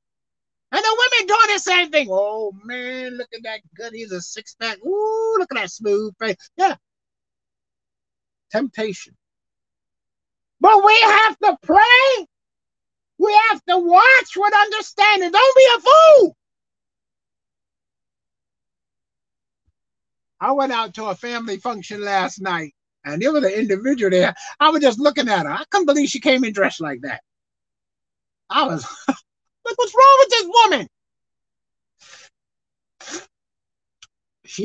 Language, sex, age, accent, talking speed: English, male, 50-69, American, 135 wpm